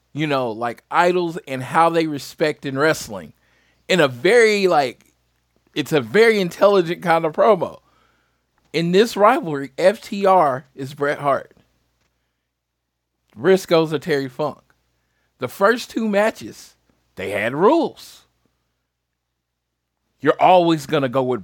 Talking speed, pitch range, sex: 125 wpm, 105-165 Hz, male